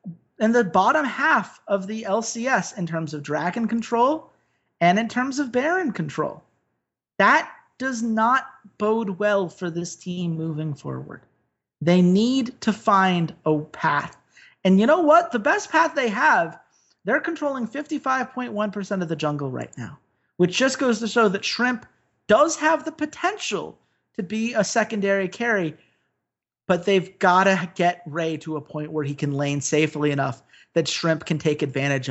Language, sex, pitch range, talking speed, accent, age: English, male, 155-245 Hz, 165 wpm, American, 30-49